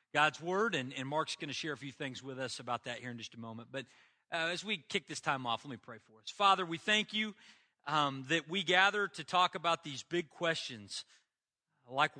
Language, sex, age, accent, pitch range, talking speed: English, male, 40-59, American, 130-165 Hz, 235 wpm